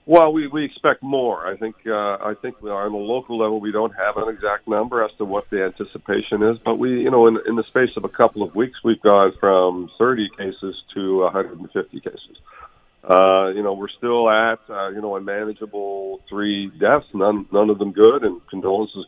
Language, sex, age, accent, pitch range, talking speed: English, male, 50-69, American, 100-125 Hz, 225 wpm